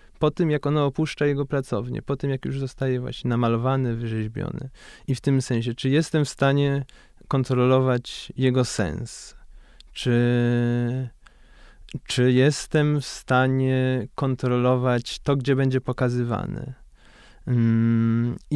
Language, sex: Polish, male